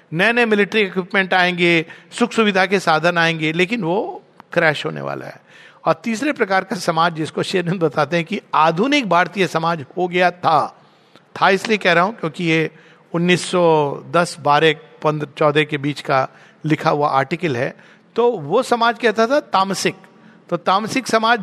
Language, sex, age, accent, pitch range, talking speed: Hindi, male, 50-69, native, 165-215 Hz, 160 wpm